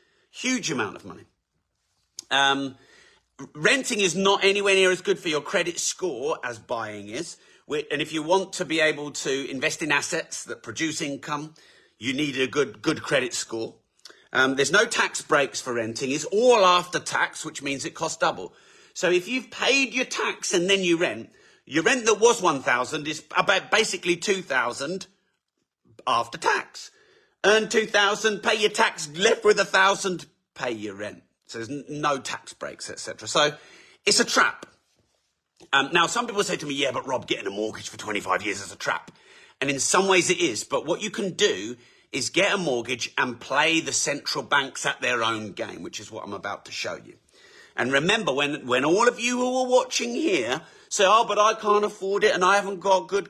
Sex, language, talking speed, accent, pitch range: male, English, 200 wpm, British, 140-215 Hz